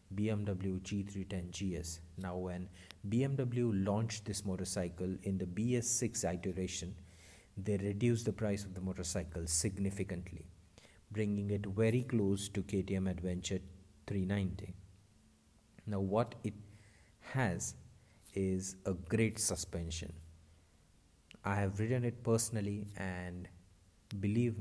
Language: English